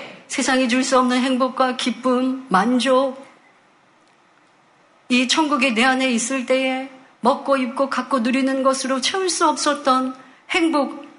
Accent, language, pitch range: native, Korean, 225-290 Hz